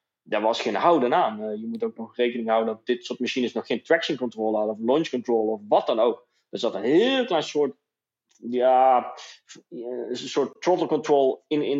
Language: English